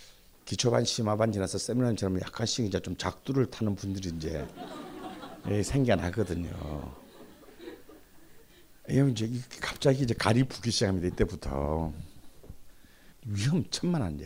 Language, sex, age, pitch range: Korean, male, 60-79, 90-130 Hz